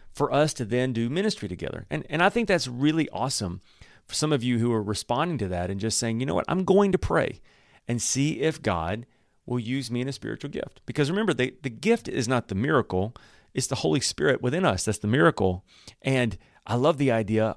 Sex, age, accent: male, 40-59, American